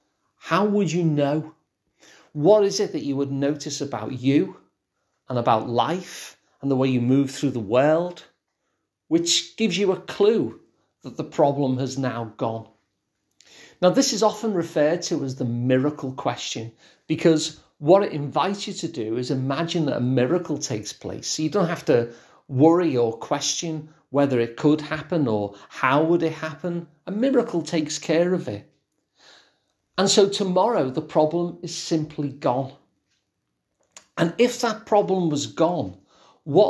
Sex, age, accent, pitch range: male, 40-59, British, 135-175 Hz